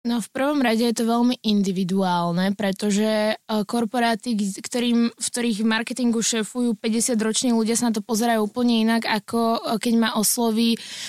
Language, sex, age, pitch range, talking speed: Slovak, female, 20-39, 220-245 Hz, 150 wpm